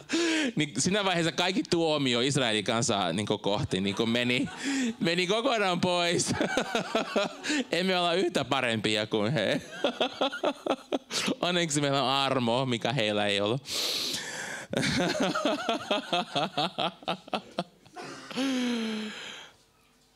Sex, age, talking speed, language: male, 20-39, 85 wpm, Finnish